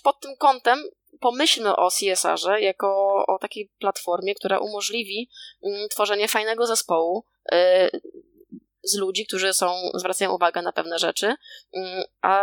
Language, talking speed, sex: Polish, 120 wpm, female